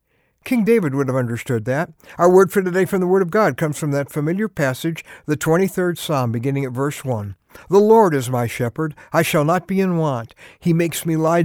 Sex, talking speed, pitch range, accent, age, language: male, 220 wpm, 135-195 Hz, American, 60-79, English